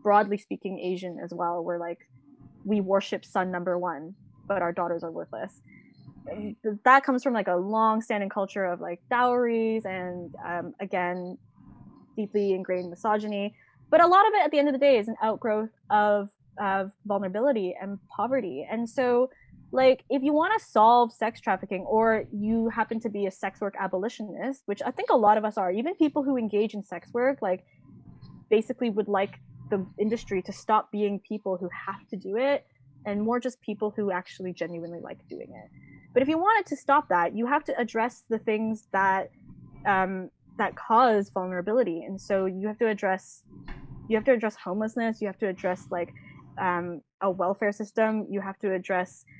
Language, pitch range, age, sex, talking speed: English, 185-225 Hz, 10-29, female, 185 wpm